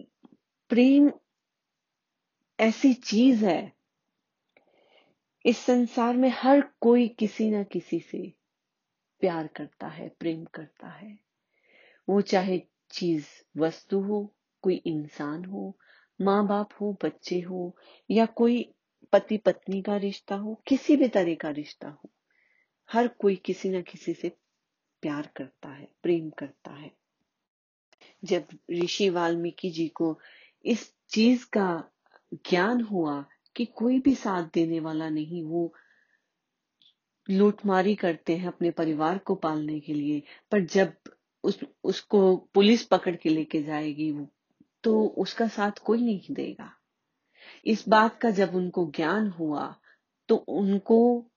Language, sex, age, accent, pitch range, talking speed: Hindi, female, 30-49, native, 170-225 Hz, 125 wpm